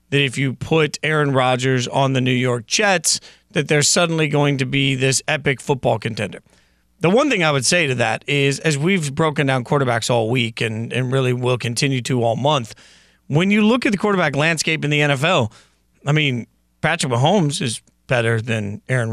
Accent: American